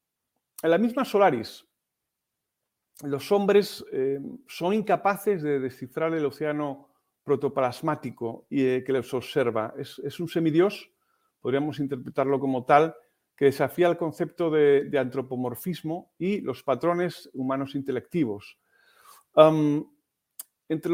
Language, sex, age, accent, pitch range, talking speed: Spanish, male, 50-69, Spanish, 135-180 Hz, 110 wpm